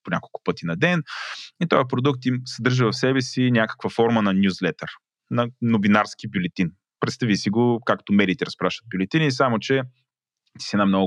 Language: Bulgarian